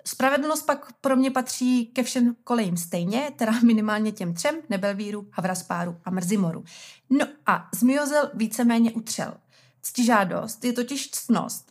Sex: female